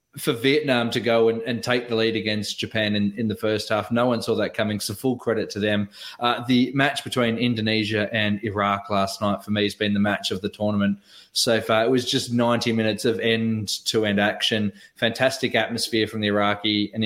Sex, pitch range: male, 110-125 Hz